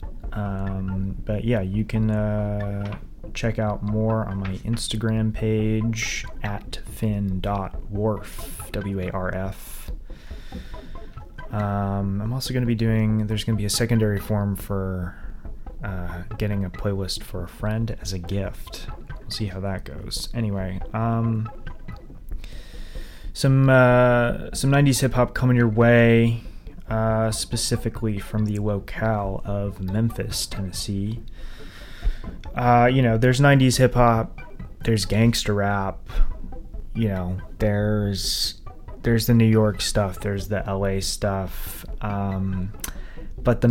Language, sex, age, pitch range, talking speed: English, male, 20-39, 95-115 Hz, 120 wpm